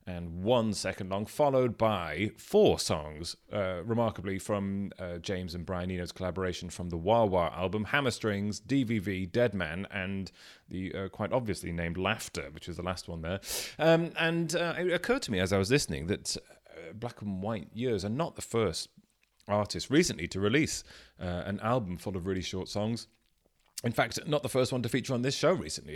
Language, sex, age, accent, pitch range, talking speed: English, male, 30-49, British, 90-120 Hz, 190 wpm